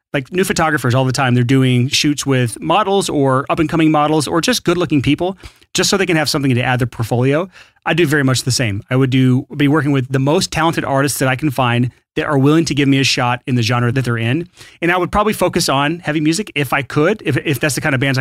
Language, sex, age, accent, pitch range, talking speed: English, male, 30-49, American, 125-155 Hz, 275 wpm